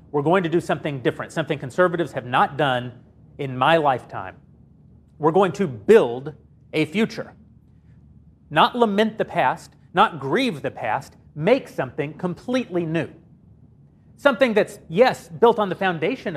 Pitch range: 155-220 Hz